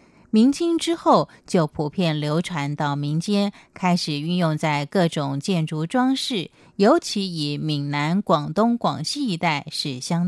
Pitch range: 150-210 Hz